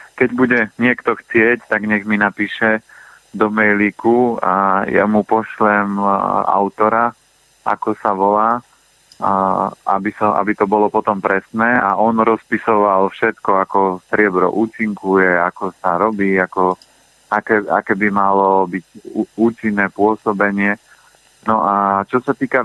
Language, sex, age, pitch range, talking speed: Slovak, male, 30-49, 100-110 Hz, 125 wpm